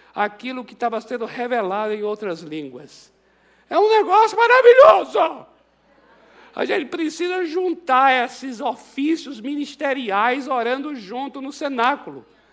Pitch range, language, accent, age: 250-330 Hz, Portuguese, Brazilian, 60-79